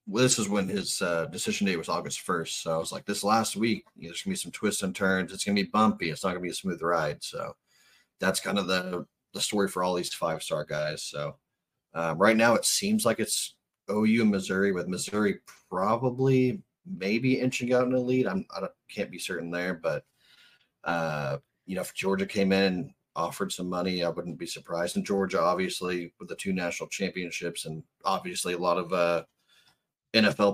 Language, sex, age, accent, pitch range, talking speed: English, male, 30-49, American, 90-105 Hz, 210 wpm